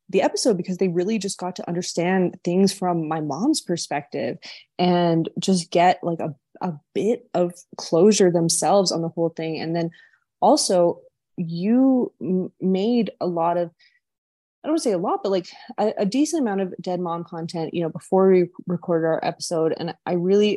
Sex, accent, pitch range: female, American, 165-200 Hz